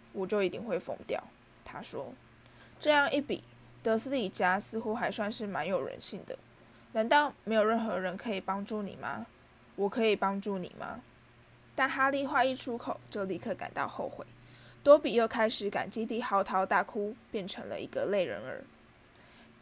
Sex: female